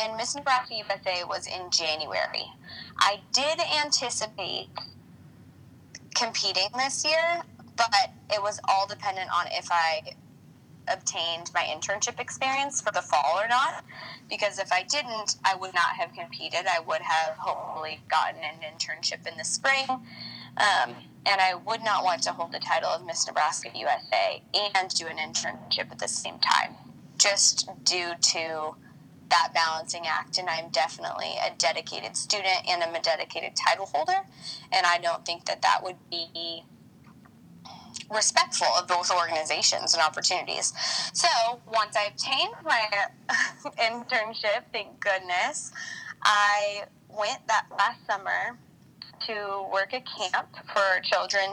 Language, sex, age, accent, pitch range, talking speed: English, female, 20-39, American, 170-235 Hz, 140 wpm